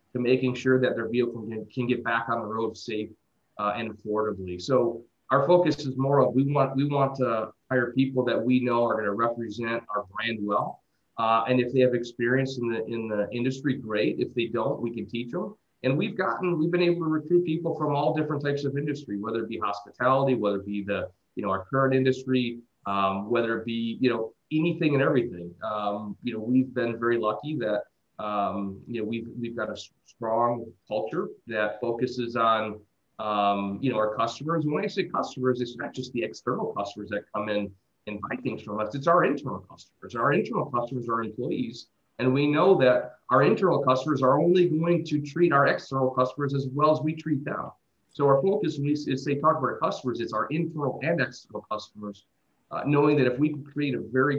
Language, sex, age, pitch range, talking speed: English, male, 30-49, 110-140 Hz, 215 wpm